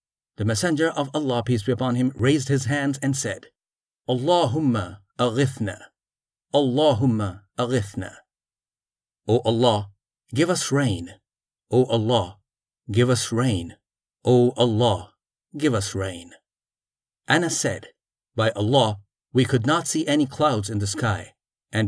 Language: English